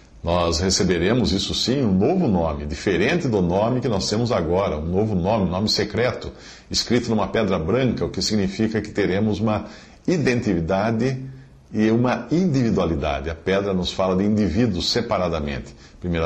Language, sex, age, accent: Portuguese, male, 50-69, Brazilian